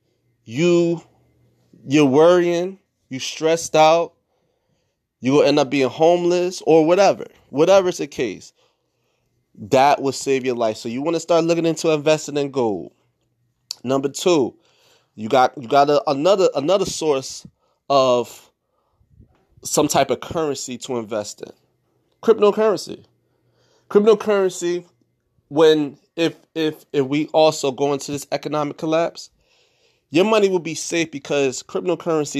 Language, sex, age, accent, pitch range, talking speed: English, male, 30-49, American, 140-195 Hz, 130 wpm